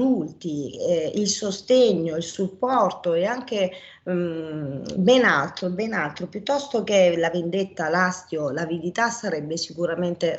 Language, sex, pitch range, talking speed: Italian, female, 160-195 Hz, 115 wpm